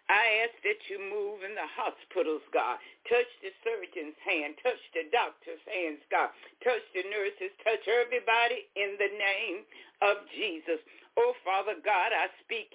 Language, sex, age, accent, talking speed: English, female, 60-79, American, 155 wpm